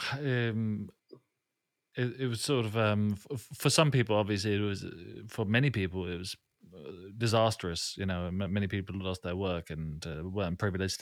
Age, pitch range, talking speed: 30-49, 95-115 Hz, 175 wpm